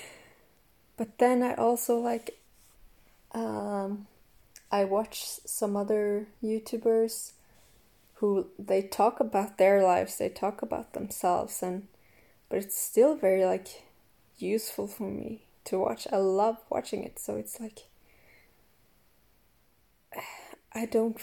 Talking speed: 115 wpm